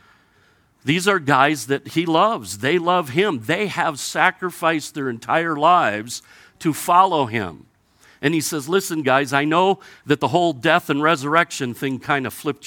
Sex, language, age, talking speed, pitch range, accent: male, English, 50-69, 165 wpm, 135-175 Hz, American